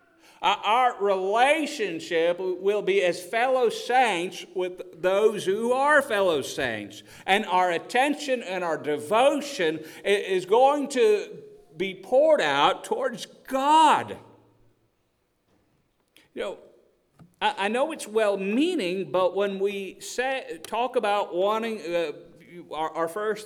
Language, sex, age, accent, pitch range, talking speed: English, male, 40-59, American, 175-260 Hz, 120 wpm